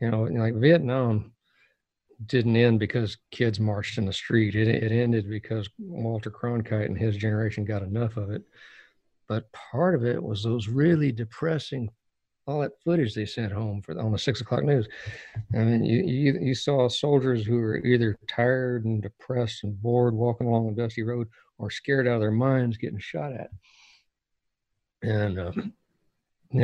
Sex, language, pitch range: male, English, 110-130 Hz